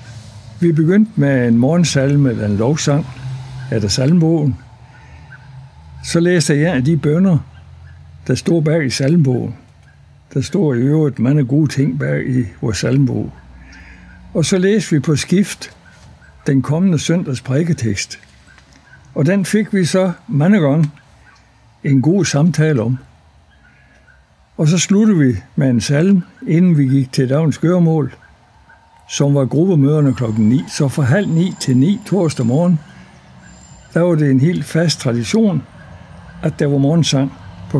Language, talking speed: Danish, 145 wpm